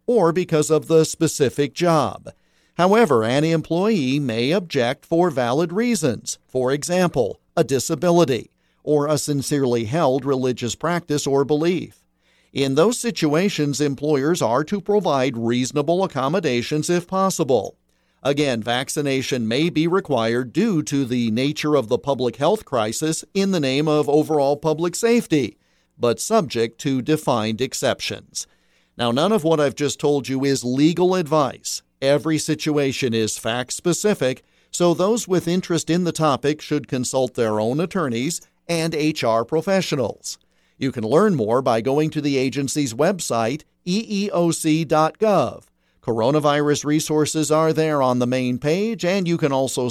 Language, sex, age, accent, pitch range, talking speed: English, male, 50-69, American, 130-170 Hz, 140 wpm